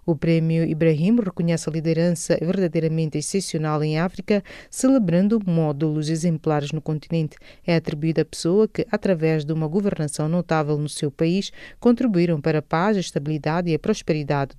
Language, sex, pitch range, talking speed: English, female, 150-185 Hz, 150 wpm